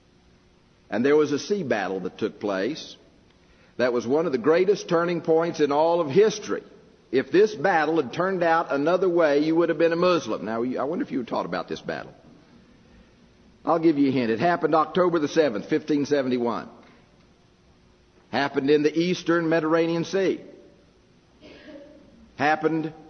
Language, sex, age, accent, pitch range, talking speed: English, male, 50-69, American, 115-170 Hz, 165 wpm